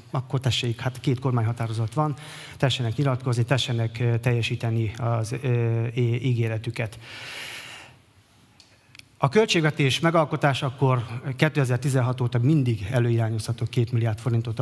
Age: 30-49